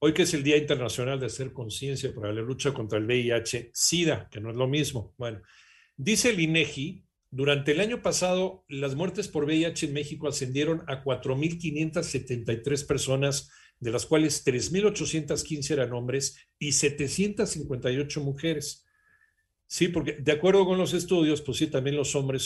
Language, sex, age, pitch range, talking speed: Spanish, male, 50-69, 125-165 Hz, 160 wpm